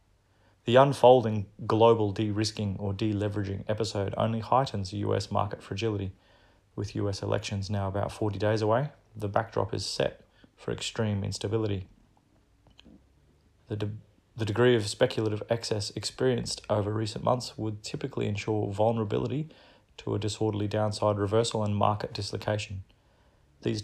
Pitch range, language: 100-115 Hz, English